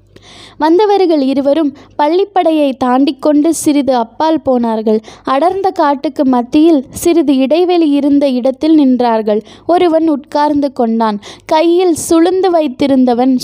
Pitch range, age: 255-325 Hz, 20-39